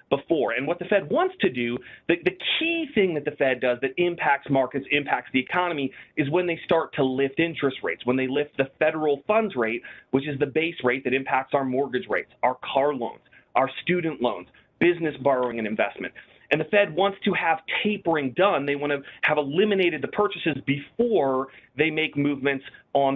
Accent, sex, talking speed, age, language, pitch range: American, male, 200 wpm, 30-49, English, 135-180 Hz